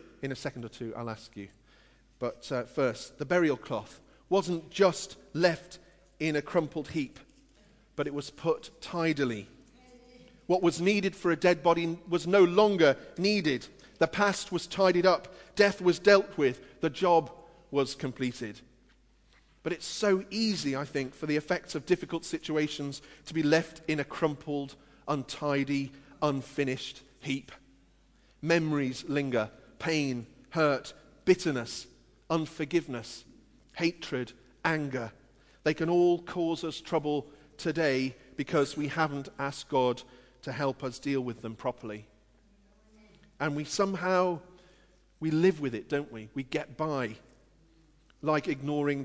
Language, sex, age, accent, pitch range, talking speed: English, male, 40-59, British, 135-170 Hz, 135 wpm